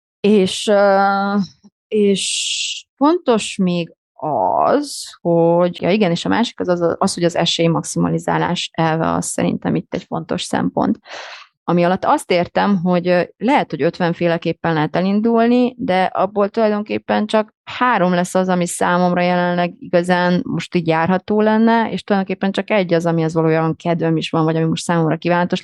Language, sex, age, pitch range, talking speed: Hungarian, female, 30-49, 165-200 Hz, 160 wpm